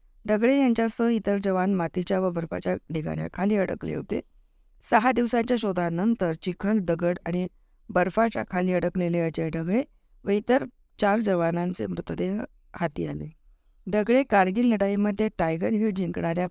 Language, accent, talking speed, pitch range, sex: Marathi, native, 125 wpm, 155-210 Hz, female